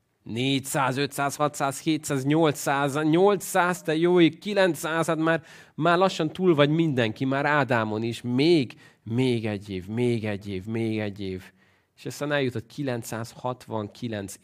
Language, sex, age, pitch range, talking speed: Hungarian, male, 30-49, 105-140 Hz, 135 wpm